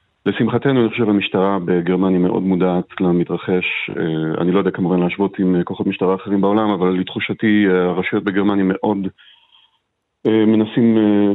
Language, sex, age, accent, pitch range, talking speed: Hebrew, male, 40-59, Polish, 95-110 Hz, 125 wpm